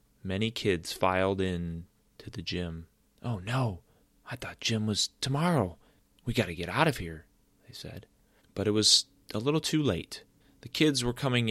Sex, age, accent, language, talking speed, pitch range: male, 30-49, American, English, 175 wpm, 90-110 Hz